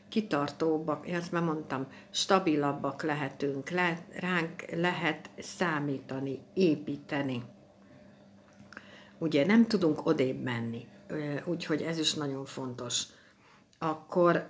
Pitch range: 145-180 Hz